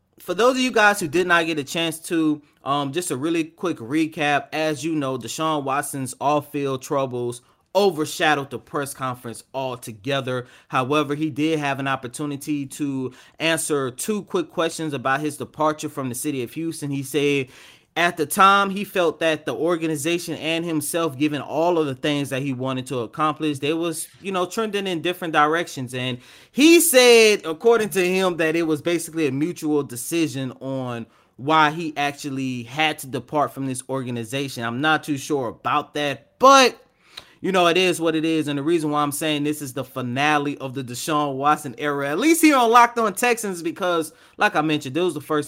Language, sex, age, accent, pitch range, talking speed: English, male, 20-39, American, 135-165 Hz, 195 wpm